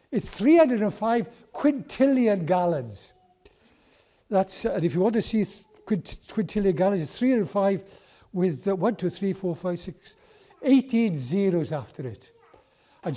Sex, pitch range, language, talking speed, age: male, 165-225 Hz, English, 130 wpm, 60-79